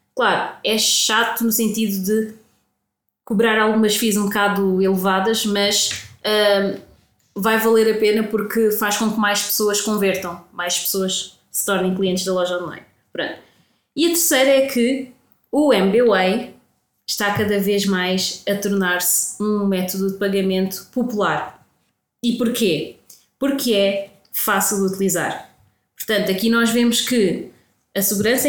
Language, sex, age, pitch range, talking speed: Portuguese, female, 20-39, 195-235 Hz, 135 wpm